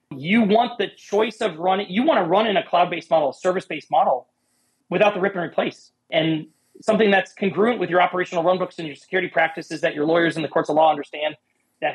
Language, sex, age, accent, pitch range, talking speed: English, male, 30-49, American, 150-185 Hz, 220 wpm